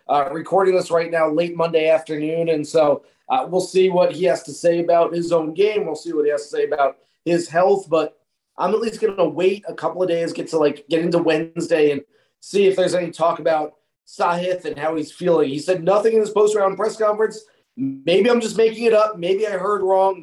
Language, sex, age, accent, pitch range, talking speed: English, male, 30-49, American, 160-200 Hz, 235 wpm